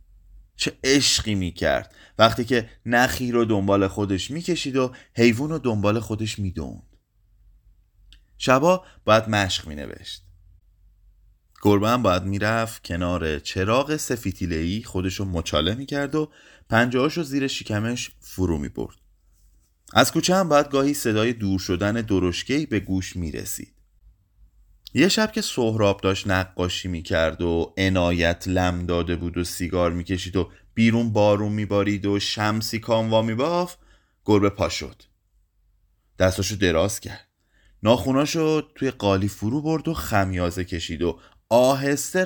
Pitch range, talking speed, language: 90-120 Hz, 125 wpm, Persian